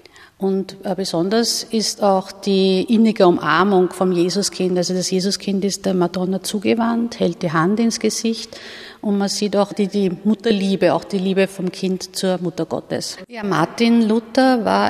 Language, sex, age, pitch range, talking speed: German, female, 50-69, 185-220 Hz, 155 wpm